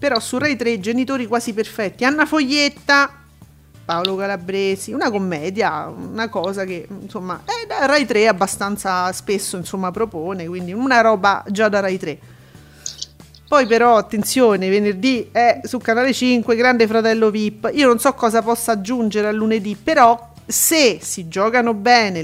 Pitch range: 200-245 Hz